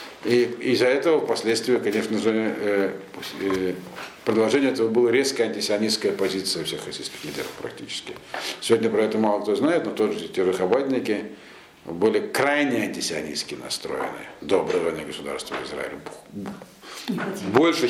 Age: 70-89